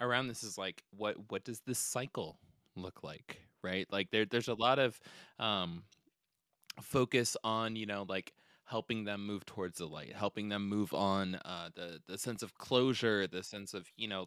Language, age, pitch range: English, 20-39, 100-125 Hz